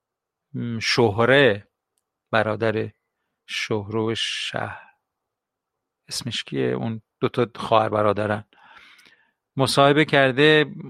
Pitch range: 110-130 Hz